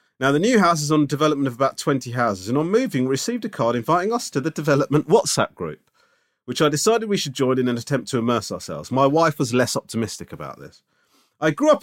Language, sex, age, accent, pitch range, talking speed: English, male, 40-59, British, 115-150 Hz, 235 wpm